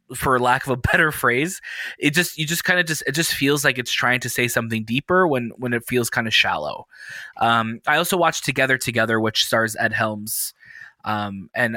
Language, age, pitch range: English, 20-39, 115-145 Hz